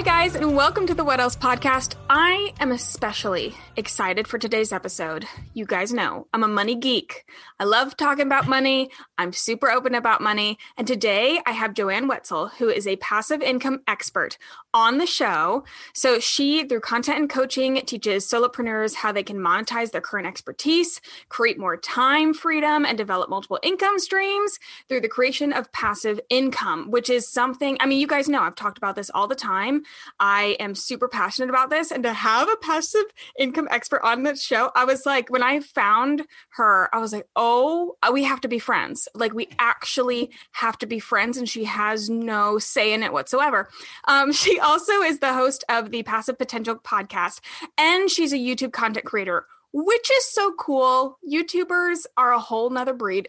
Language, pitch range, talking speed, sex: English, 225-295 Hz, 190 wpm, female